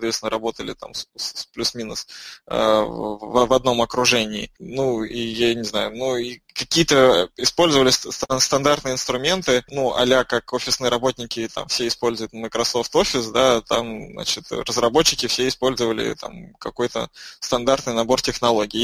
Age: 20-39